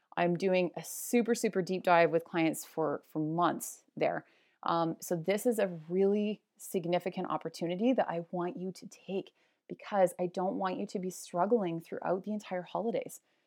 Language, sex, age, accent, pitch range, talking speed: English, female, 30-49, American, 175-210 Hz, 175 wpm